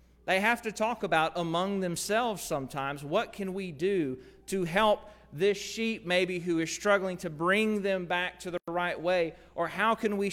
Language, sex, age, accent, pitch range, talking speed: English, male, 40-59, American, 145-195 Hz, 185 wpm